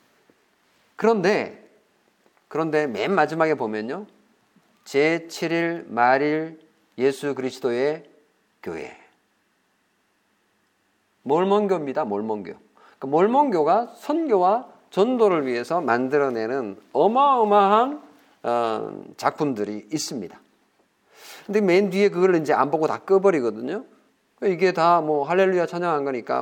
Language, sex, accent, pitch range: Korean, male, native, 130-195 Hz